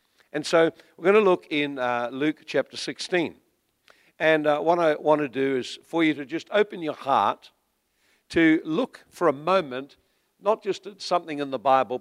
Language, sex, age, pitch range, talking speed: English, male, 60-79, 125-155 Hz, 190 wpm